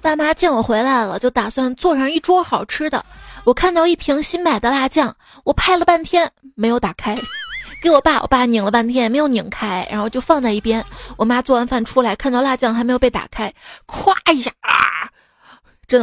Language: Chinese